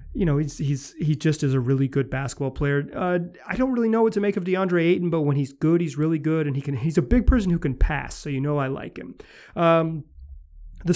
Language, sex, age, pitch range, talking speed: English, male, 30-49, 135-170 Hz, 265 wpm